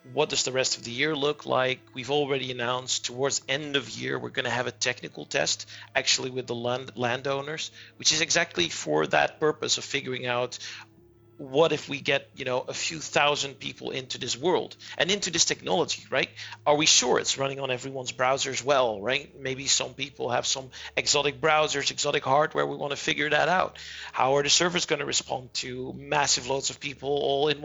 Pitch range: 130-160 Hz